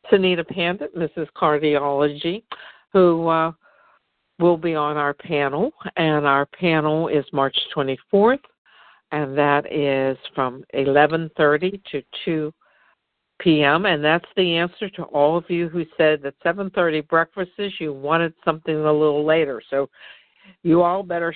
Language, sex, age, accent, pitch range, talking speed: English, female, 60-79, American, 150-185 Hz, 135 wpm